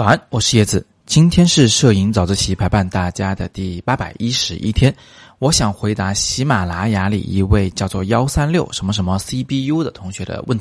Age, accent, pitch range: 30-49, native, 95-130 Hz